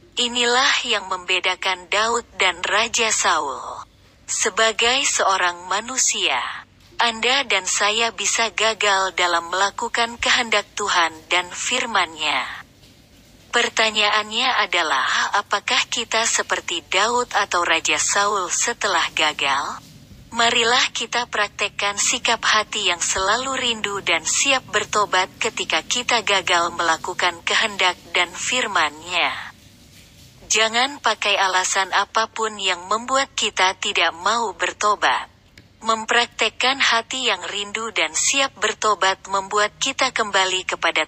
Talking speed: 105 wpm